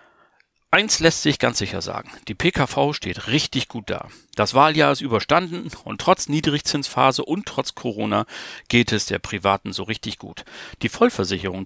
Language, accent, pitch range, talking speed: German, German, 110-145 Hz, 160 wpm